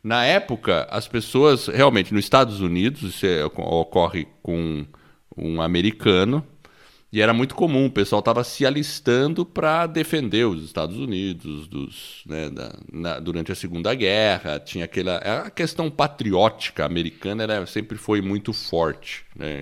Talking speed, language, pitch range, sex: 140 wpm, Portuguese, 90-135 Hz, male